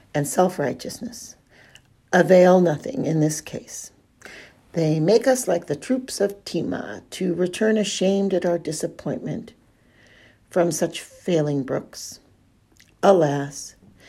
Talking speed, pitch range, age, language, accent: 110 wpm, 145-205 Hz, 60-79, English, American